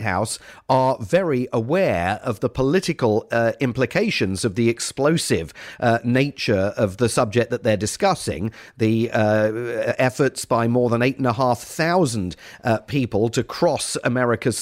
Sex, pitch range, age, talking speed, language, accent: male, 115-140 Hz, 50-69, 125 wpm, English, British